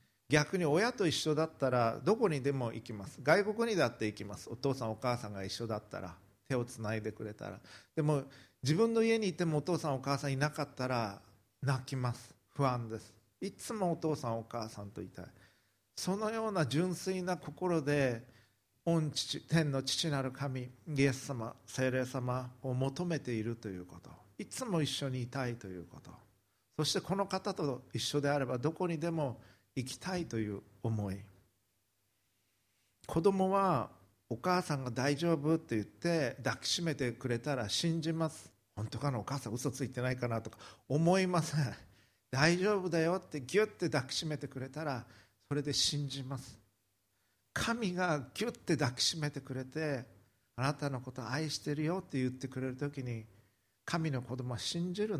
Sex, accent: male, native